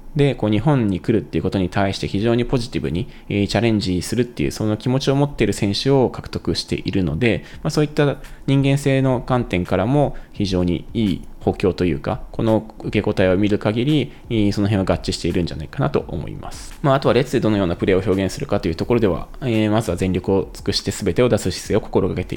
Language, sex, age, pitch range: Japanese, male, 20-39, 95-125 Hz